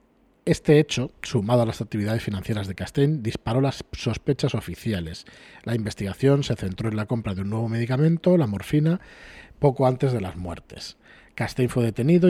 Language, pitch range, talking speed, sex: Spanish, 110-145 Hz, 165 wpm, male